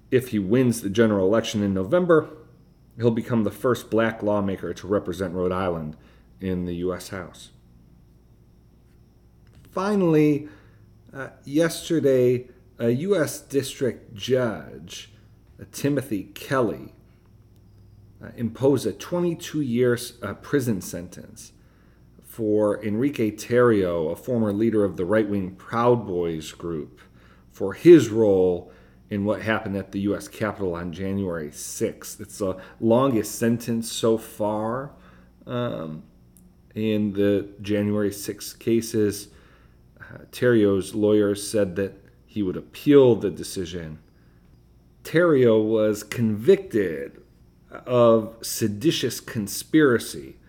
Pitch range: 90-115 Hz